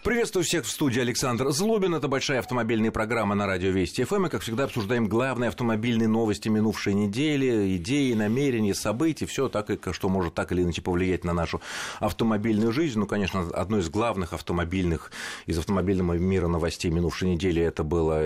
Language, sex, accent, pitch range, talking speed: Russian, male, native, 85-115 Hz, 170 wpm